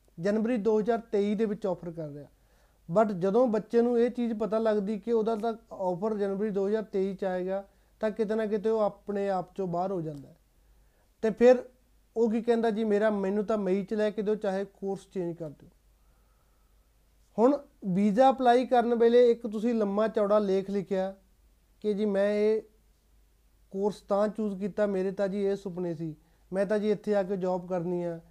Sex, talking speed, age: male, 165 wpm, 30-49